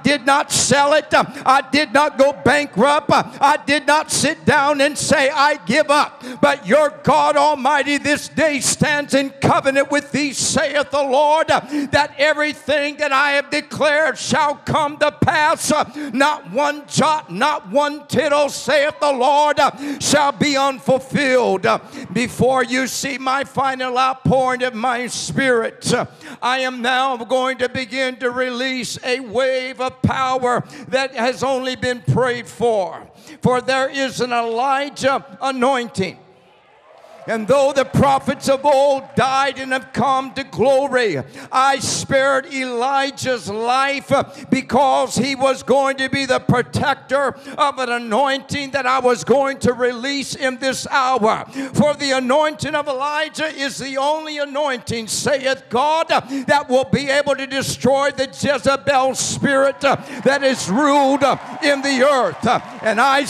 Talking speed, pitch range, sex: 145 wpm, 255-285 Hz, male